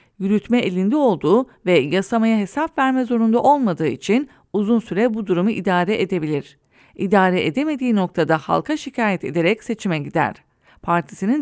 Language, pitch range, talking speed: English, 180-245 Hz, 130 wpm